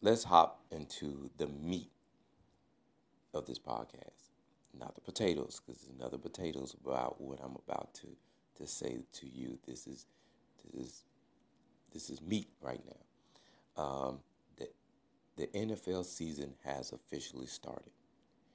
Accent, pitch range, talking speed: American, 70-110 Hz, 135 wpm